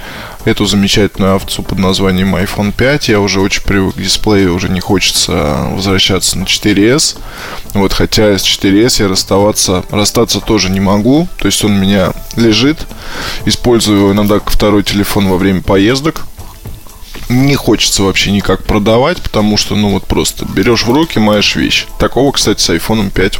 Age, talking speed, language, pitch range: 20-39, 160 wpm, Russian, 95-125 Hz